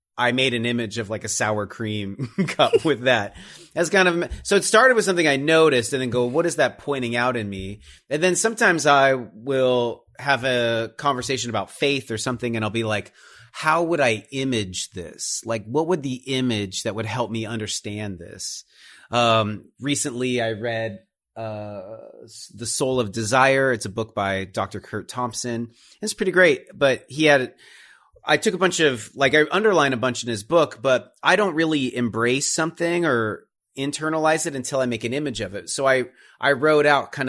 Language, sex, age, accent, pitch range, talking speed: English, male, 30-49, American, 105-135 Hz, 195 wpm